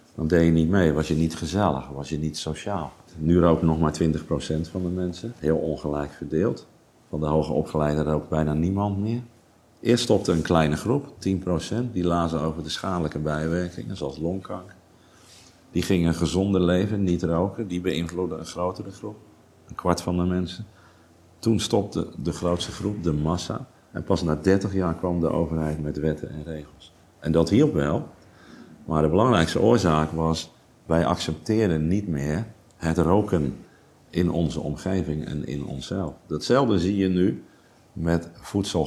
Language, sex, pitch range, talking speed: Dutch, male, 80-95 Hz, 165 wpm